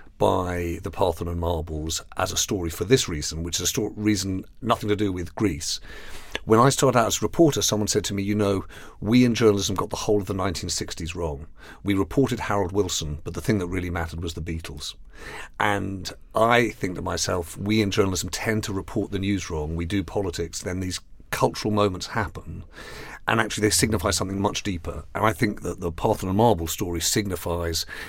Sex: male